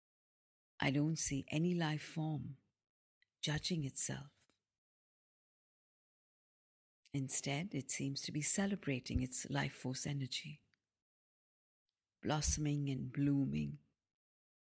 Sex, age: female, 50-69